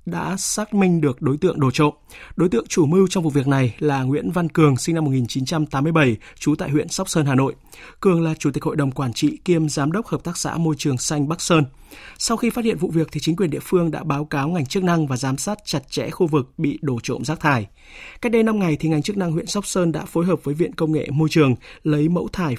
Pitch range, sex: 145-185 Hz, male